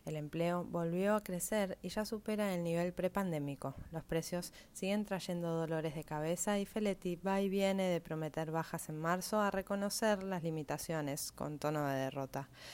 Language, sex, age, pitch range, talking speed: Spanish, female, 20-39, 155-195 Hz, 170 wpm